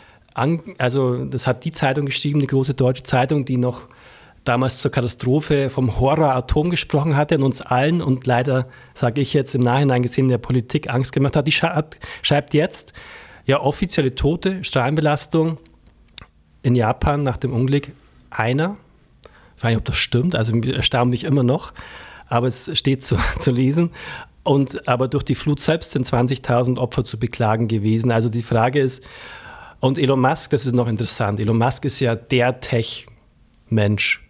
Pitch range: 120-145 Hz